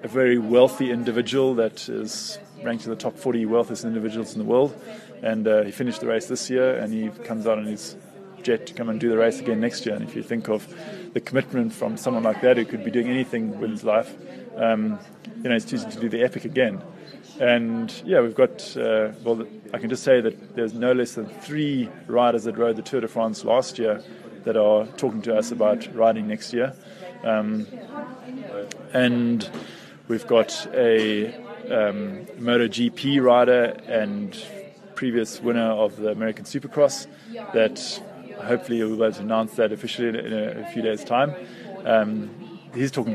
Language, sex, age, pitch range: English, male, 20-39, 110-130 Hz